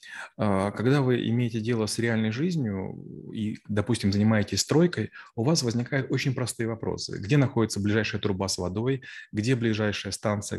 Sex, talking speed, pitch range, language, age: male, 145 wpm, 105-125 Hz, Russian, 20-39